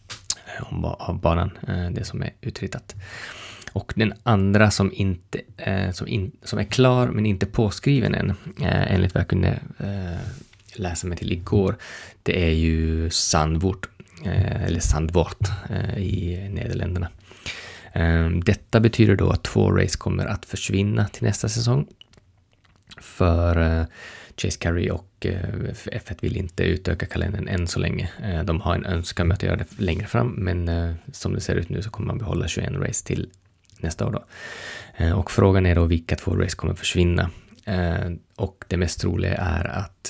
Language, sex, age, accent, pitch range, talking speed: Swedish, male, 20-39, native, 90-105 Hz, 145 wpm